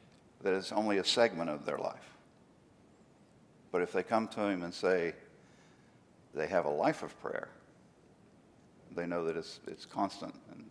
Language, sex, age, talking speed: English, male, 60-79, 165 wpm